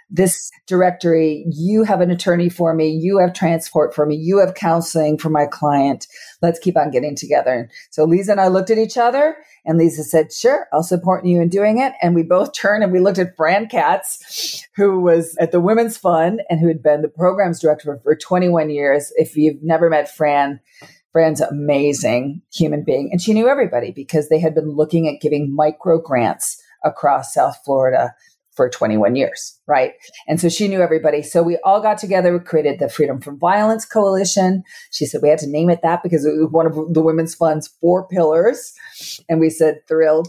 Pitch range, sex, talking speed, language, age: 155-185 Hz, female, 205 wpm, English, 40-59